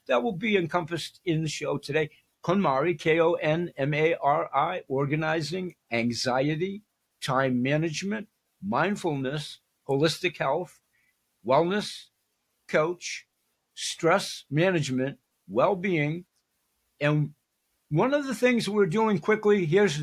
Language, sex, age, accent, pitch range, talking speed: English, male, 60-79, American, 145-190 Hz, 95 wpm